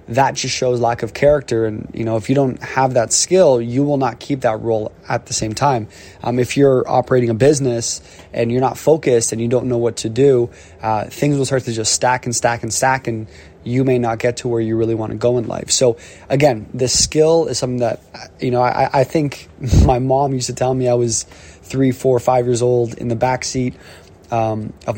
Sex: male